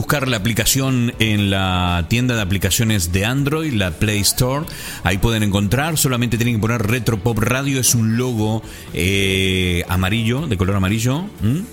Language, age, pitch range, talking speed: Spanish, 30-49, 95-120 Hz, 165 wpm